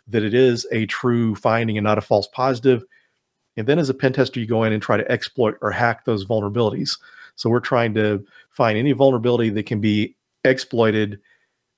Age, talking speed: 40-59, 200 wpm